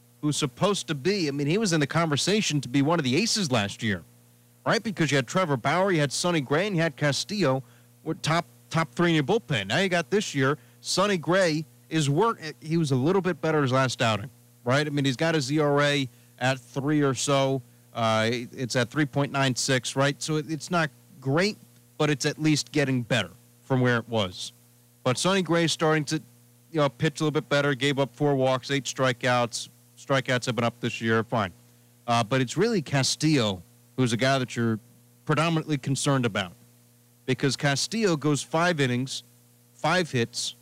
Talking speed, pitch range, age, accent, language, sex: 200 wpm, 120-155 Hz, 40-59, American, English, male